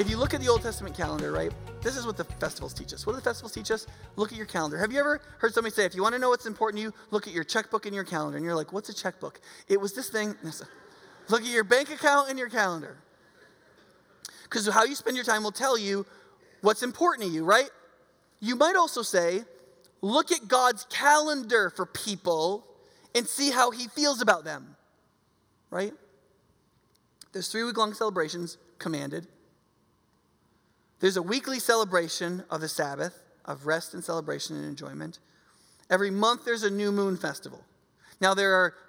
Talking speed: 195 wpm